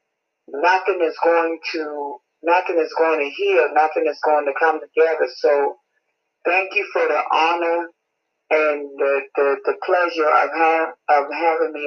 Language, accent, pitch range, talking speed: English, American, 155-185 Hz, 155 wpm